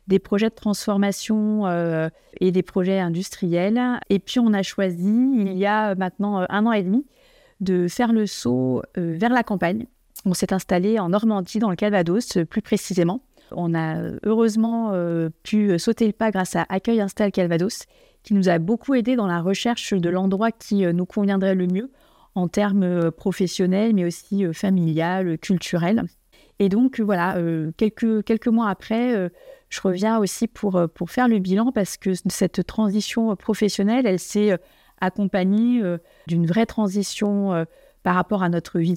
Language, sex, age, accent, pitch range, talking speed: French, female, 30-49, French, 180-225 Hz, 170 wpm